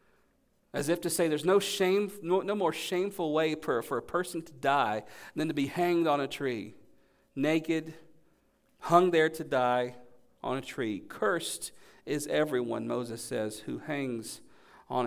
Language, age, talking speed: English, 40-59, 155 wpm